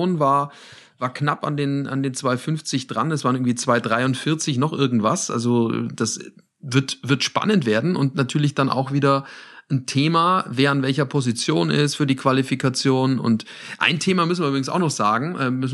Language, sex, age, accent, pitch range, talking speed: German, male, 40-59, German, 110-135 Hz, 170 wpm